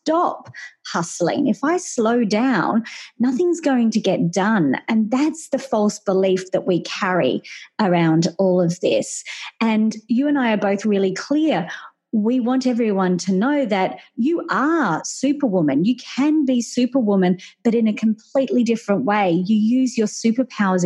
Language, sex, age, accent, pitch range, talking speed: English, female, 30-49, Australian, 195-245 Hz, 155 wpm